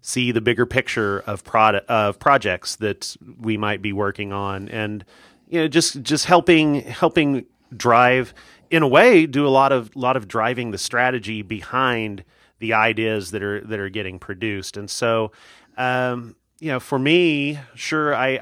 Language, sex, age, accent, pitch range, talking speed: English, male, 30-49, American, 100-125 Hz, 170 wpm